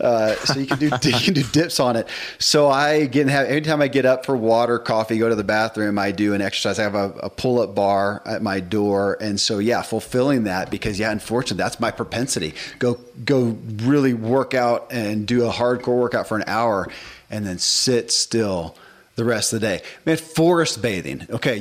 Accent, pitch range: American, 105-130 Hz